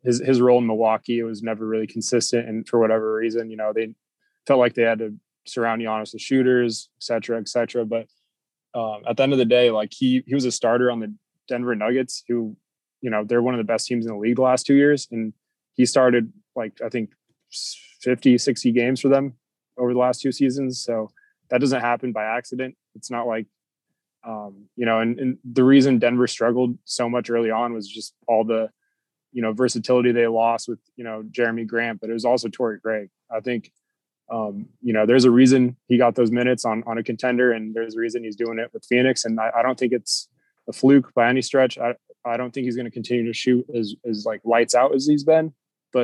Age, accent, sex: 20-39, American, male